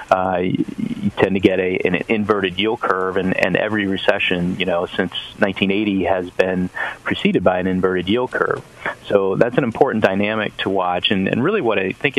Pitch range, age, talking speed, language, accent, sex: 95-105 Hz, 30-49, 190 wpm, English, American, male